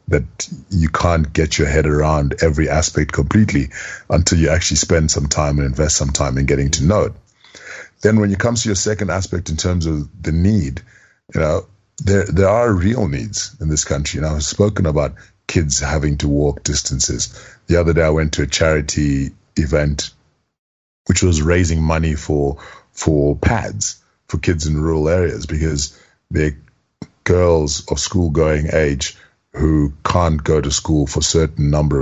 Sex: male